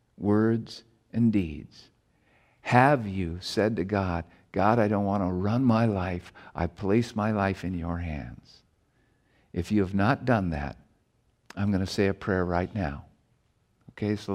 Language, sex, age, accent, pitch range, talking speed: English, male, 50-69, American, 95-115 Hz, 160 wpm